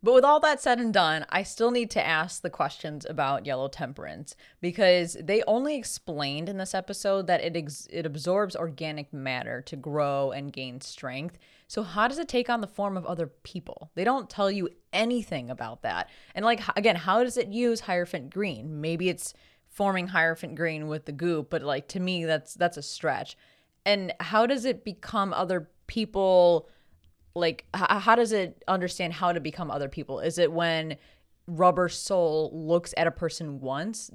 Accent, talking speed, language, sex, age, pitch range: American, 185 wpm, English, female, 20-39, 155-200 Hz